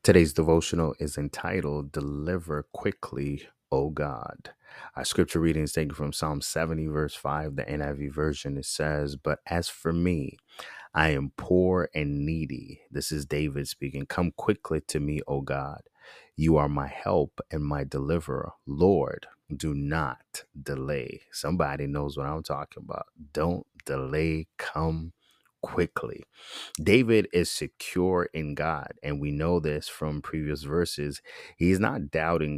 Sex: male